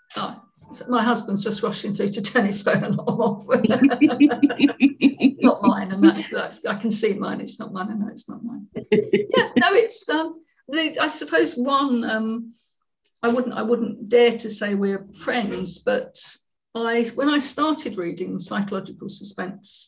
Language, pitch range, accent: English, 210-260 Hz, British